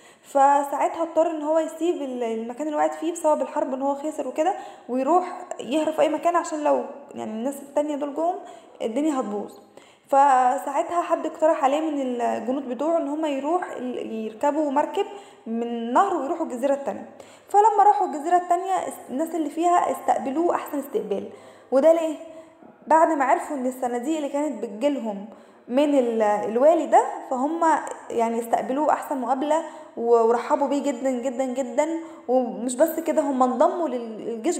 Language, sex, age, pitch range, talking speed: Arabic, female, 10-29, 260-325 Hz, 145 wpm